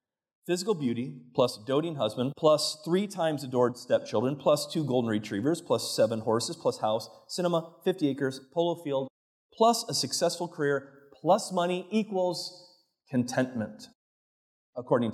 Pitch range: 130-180 Hz